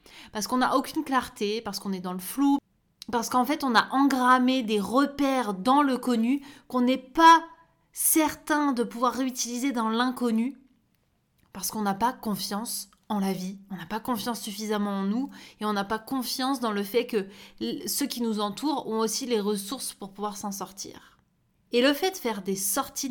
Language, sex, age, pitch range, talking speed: French, female, 20-39, 210-270 Hz, 190 wpm